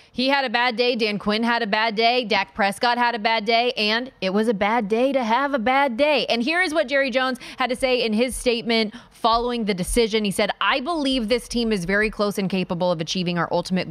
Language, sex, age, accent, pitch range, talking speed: English, female, 20-39, American, 175-230 Hz, 250 wpm